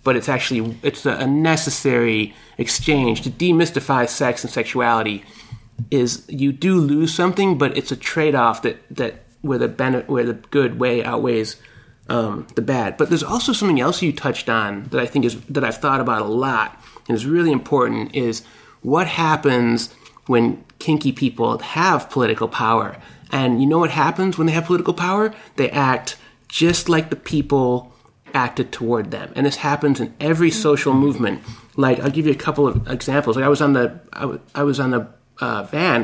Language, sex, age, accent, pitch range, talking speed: English, male, 30-49, American, 120-150 Hz, 185 wpm